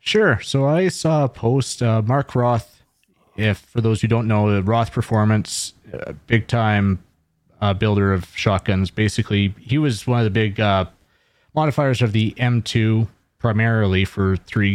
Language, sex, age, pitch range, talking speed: English, male, 30-49, 100-125 Hz, 165 wpm